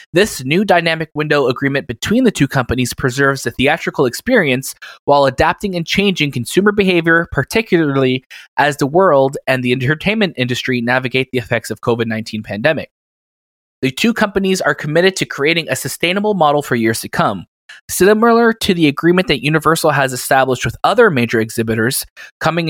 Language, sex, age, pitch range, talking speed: English, male, 20-39, 130-170 Hz, 160 wpm